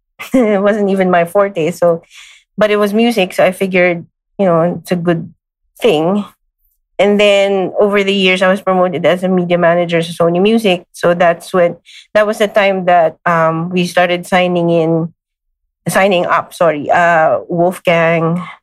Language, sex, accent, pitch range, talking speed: English, female, Filipino, 165-195 Hz, 170 wpm